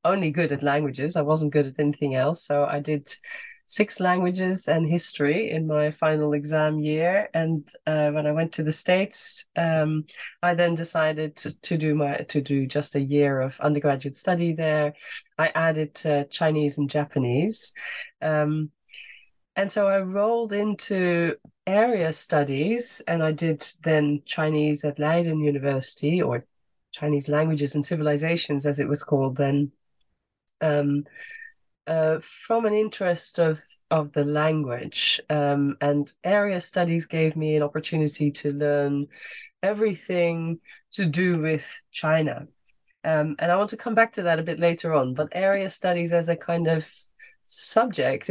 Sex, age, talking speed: female, 20-39, 155 wpm